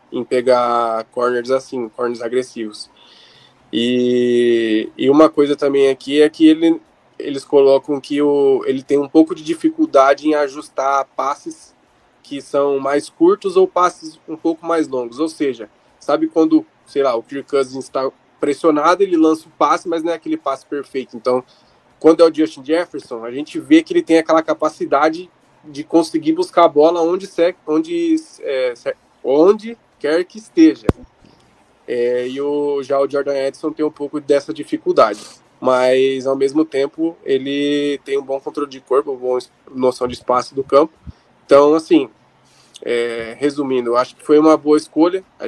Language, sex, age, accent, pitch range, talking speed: Portuguese, male, 20-39, Brazilian, 130-165 Hz, 165 wpm